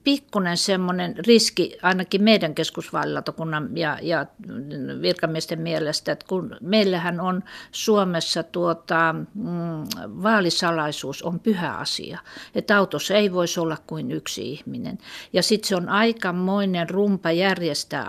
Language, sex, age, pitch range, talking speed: Finnish, female, 50-69, 165-205 Hz, 115 wpm